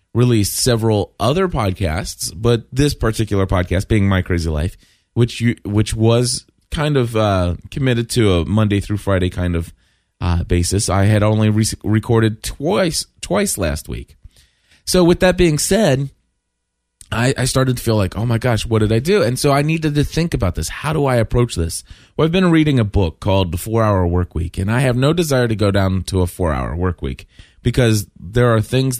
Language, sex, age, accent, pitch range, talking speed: English, male, 20-39, American, 90-120 Hz, 205 wpm